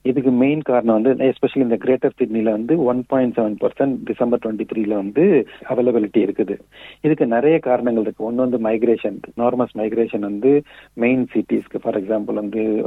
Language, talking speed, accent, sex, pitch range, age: Tamil, 165 wpm, native, male, 110-130 Hz, 40-59